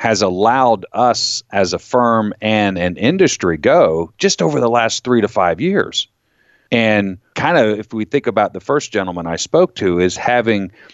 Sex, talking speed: male, 180 wpm